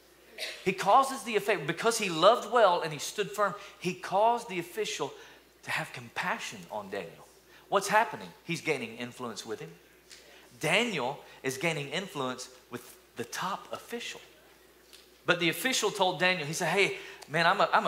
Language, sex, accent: English, male, American